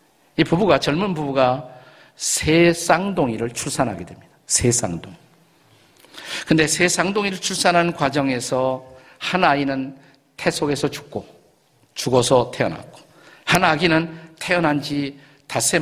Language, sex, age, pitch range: Korean, male, 50-69, 120-165 Hz